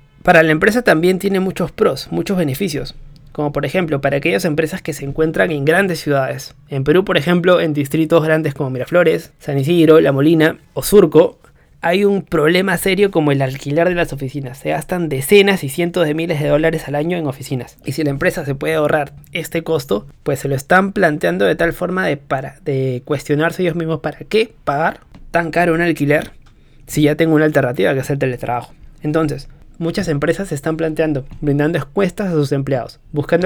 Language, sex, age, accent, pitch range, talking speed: Spanish, male, 20-39, Argentinian, 145-175 Hz, 195 wpm